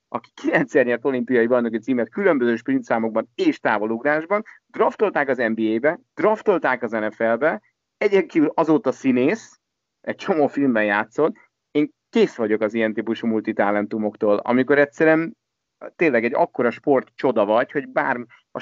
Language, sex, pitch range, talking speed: Hungarian, male, 110-130 Hz, 130 wpm